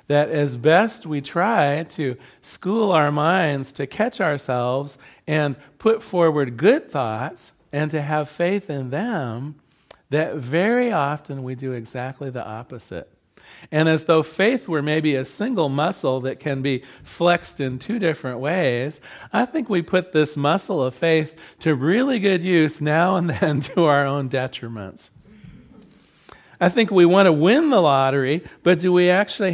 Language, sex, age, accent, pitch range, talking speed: English, male, 40-59, American, 140-180 Hz, 160 wpm